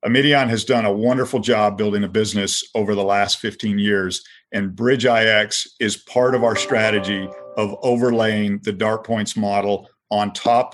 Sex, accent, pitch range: male, American, 100-115 Hz